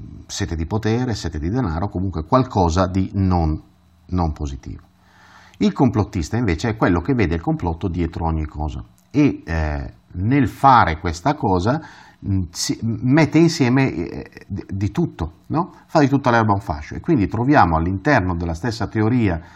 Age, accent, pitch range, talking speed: 50-69, native, 85-115 Hz, 155 wpm